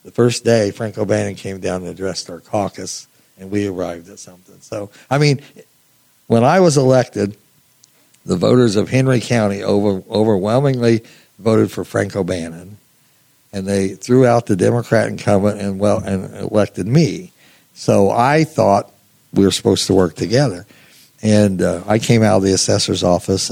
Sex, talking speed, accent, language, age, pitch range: male, 165 wpm, American, English, 60-79, 95-120 Hz